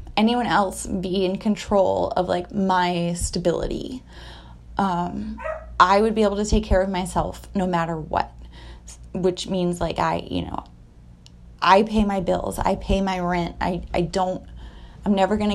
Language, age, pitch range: English, 20-39, 170-210 Hz